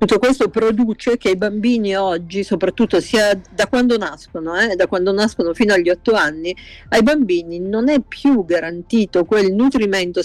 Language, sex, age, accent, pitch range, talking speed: Italian, female, 50-69, native, 180-225 Hz, 165 wpm